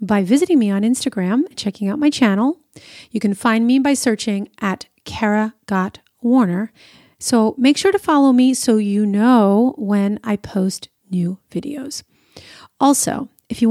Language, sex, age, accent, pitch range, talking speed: English, female, 30-49, American, 200-260 Hz, 160 wpm